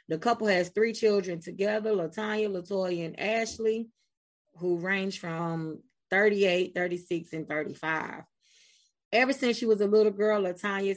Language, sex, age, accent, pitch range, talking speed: English, female, 30-49, American, 165-215 Hz, 135 wpm